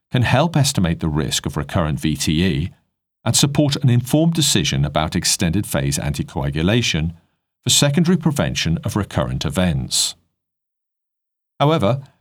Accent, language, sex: British, English, male